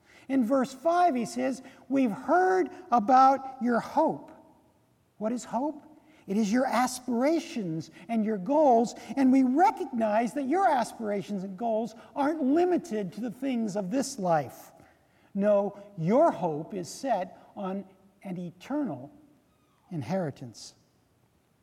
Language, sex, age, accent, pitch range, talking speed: English, male, 50-69, American, 200-295 Hz, 125 wpm